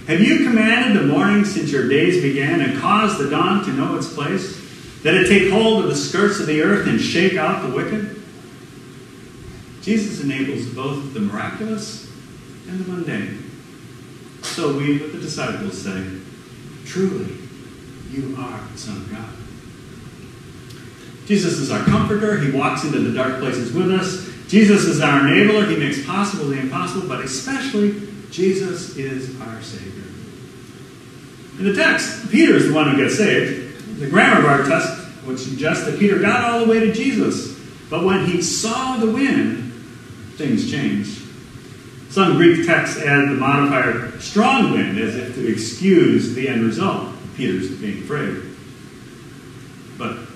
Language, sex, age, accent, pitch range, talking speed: English, male, 40-59, American, 125-185 Hz, 155 wpm